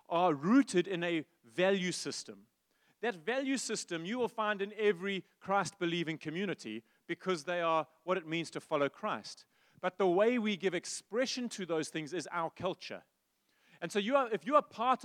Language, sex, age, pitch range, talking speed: English, male, 30-49, 170-225 Hz, 170 wpm